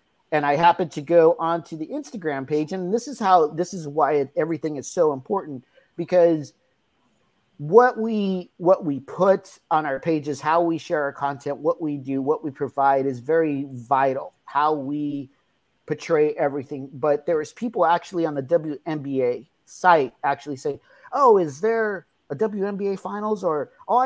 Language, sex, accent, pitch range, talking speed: English, male, American, 145-185 Hz, 165 wpm